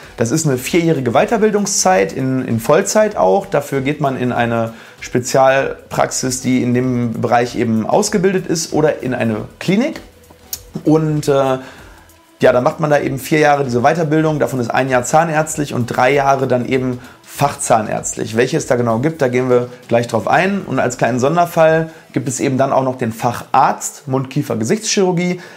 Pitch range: 115-145 Hz